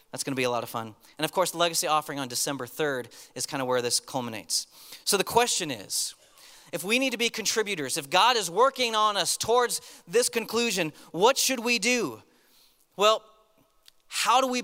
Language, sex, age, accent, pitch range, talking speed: English, male, 30-49, American, 170-215 Hz, 200 wpm